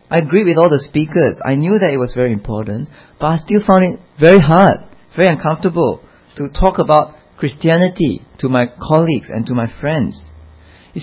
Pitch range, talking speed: 125-175 Hz, 185 wpm